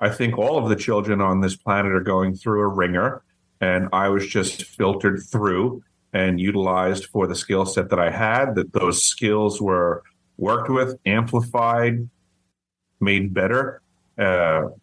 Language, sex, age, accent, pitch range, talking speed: English, male, 40-59, American, 95-110 Hz, 160 wpm